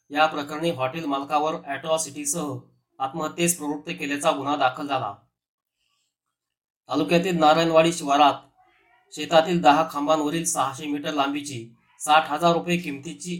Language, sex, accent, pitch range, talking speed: Marathi, male, native, 145-165 Hz, 105 wpm